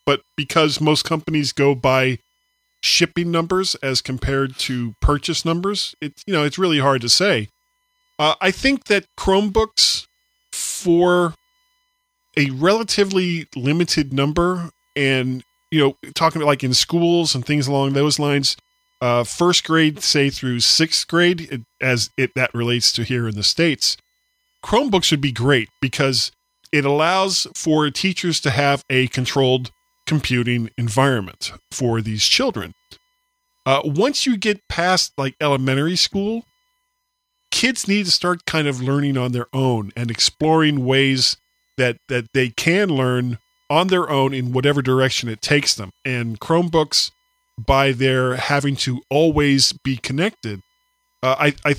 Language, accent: English, American